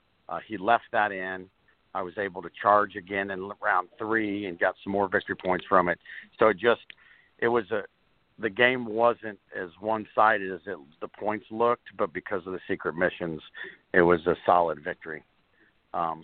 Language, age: English, 50-69